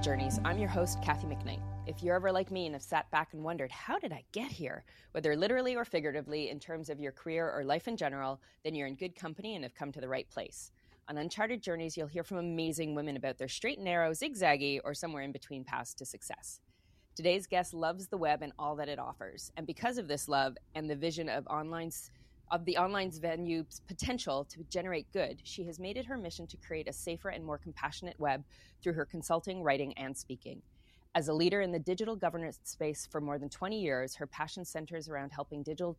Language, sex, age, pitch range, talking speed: English, female, 20-39, 140-175 Hz, 225 wpm